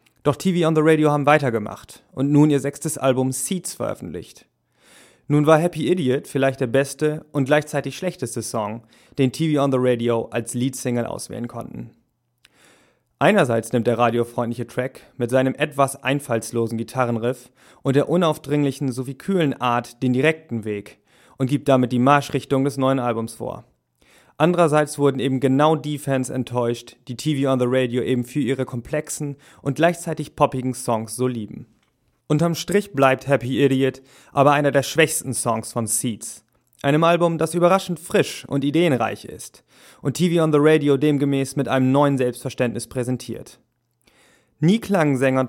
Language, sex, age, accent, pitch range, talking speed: German, male, 30-49, German, 125-150 Hz, 155 wpm